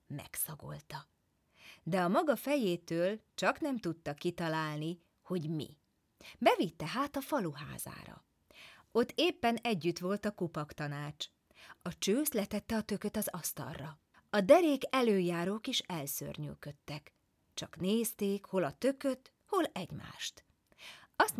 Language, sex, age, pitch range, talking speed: Hungarian, female, 30-49, 170-255 Hz, 115 wpm